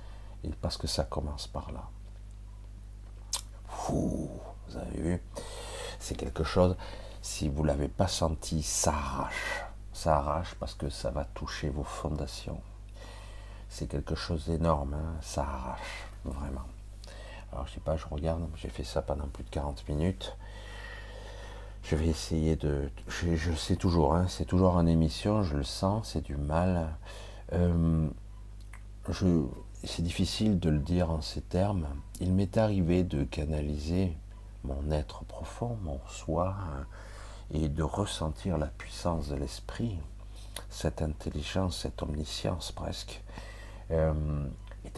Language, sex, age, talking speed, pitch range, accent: French, male, 50-69, 135 wpm, 80-100 Hz, French